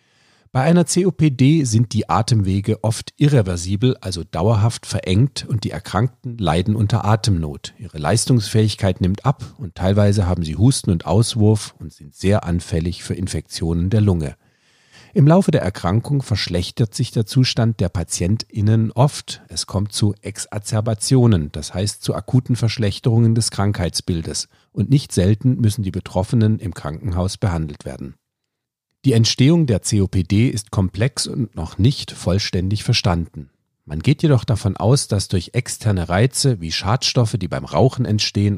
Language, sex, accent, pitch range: German, male, German, 90-120 Hz